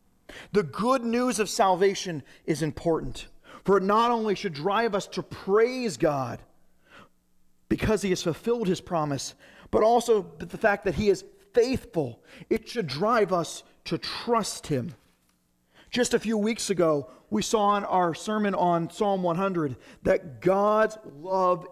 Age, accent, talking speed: 40-59, American, 150 wpm